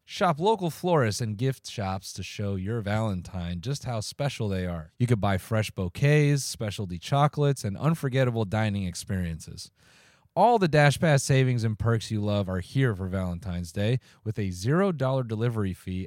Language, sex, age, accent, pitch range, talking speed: English, male, 30-49, American, 95-140 Hz, 165 wpm